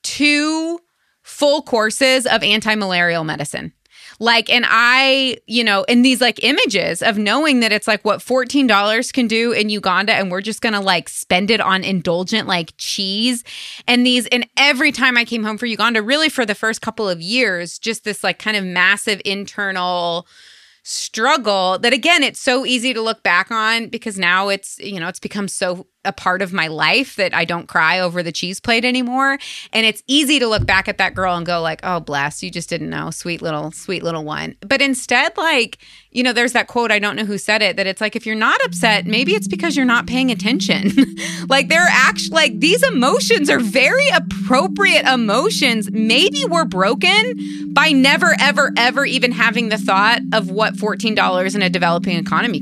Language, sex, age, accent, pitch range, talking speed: English, female, 20-39, American, 190-245 Hz, 195 wpm